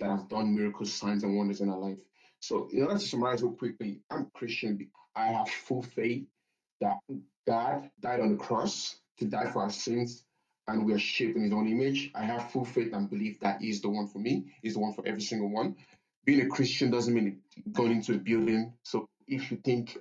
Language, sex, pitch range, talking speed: English, male, 105-130 Hz, 220 wpm